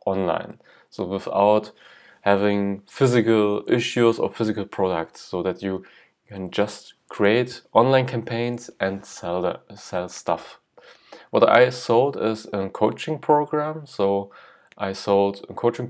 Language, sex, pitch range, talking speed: English, male, 100-120 Hz, 130 wpm